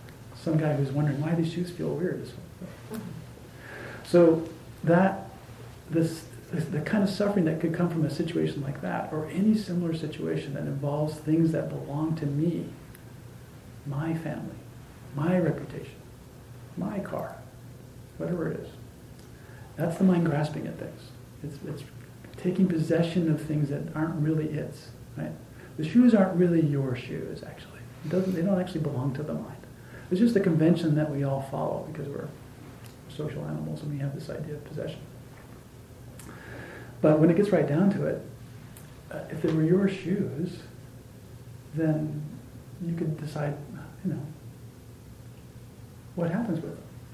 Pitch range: 125-165 Hz